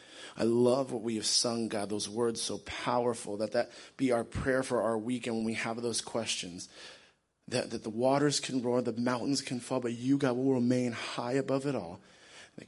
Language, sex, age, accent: English, male, 30-49, American